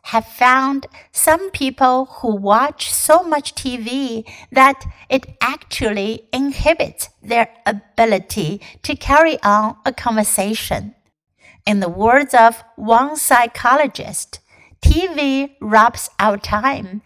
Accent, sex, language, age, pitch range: American, female, Chinese, 60-79, 215-270 Hz